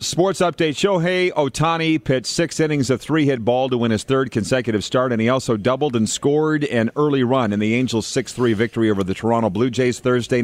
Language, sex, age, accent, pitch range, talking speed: English, male, 40-59, American, 115-140 Hz, 205 wpm